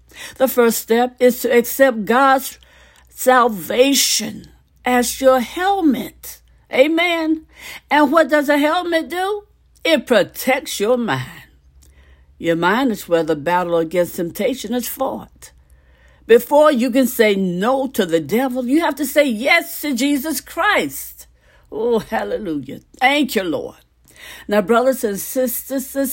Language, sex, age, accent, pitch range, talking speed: English, female, 60-79, American, 175-270 Hz, 135 wpm